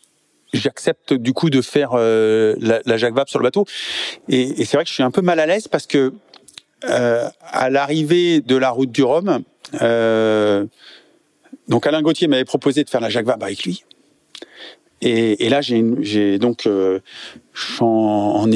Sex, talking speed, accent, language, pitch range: male, 180 wpm, French, French, 110-145 Hz